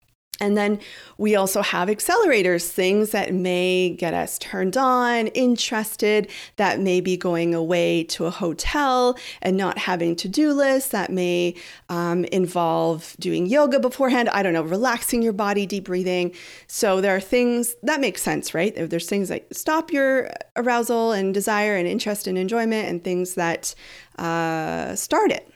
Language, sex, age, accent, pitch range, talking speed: English, female, 40-59, American, 185-255 Hz, 155 wpm